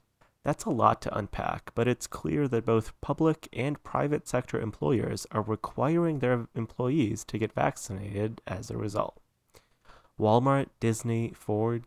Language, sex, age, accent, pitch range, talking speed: English, male, 20-39, American, 110-140 Hz, 140 wpm